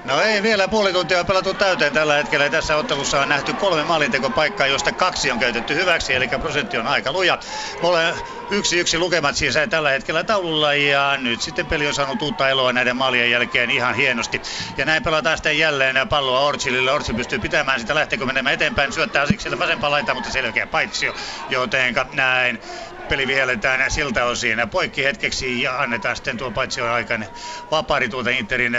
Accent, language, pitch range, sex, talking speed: native, Finnish, 125-160 Hz, male, 190 wpm